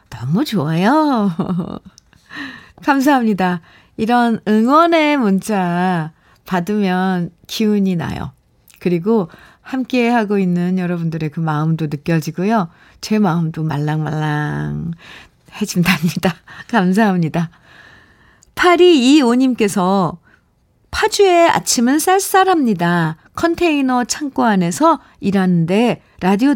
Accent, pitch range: native, 170-250 Hz